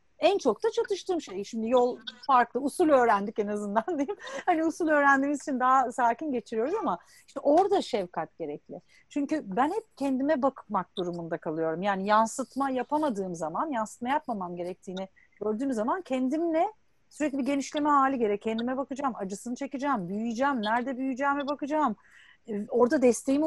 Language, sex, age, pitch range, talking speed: Turkish, female, 40-59, 215-285 Hz, 150 wpm